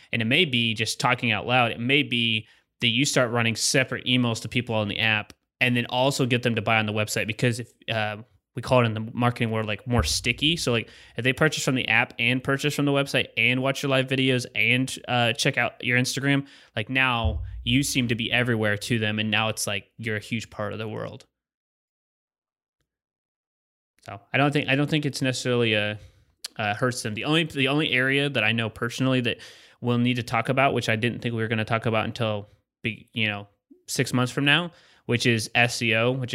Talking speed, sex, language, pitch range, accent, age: 230 wpm, male, English, 110-130 Hz, American, 20-39